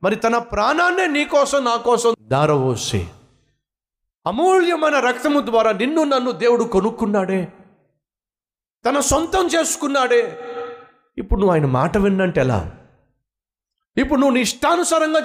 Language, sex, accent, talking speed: Telugu, male, native, 110 wpm